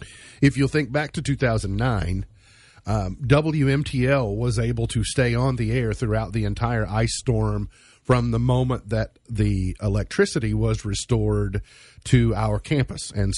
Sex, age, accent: male, 40-59, American